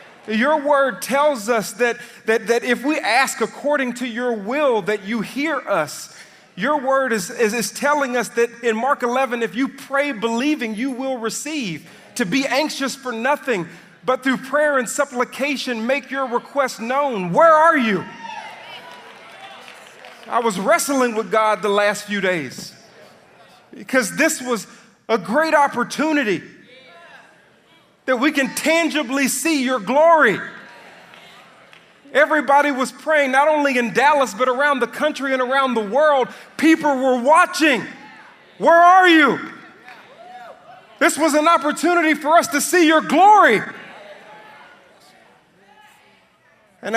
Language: English